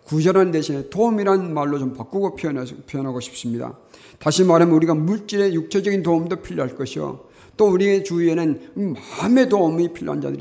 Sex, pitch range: male, 135-200 Hz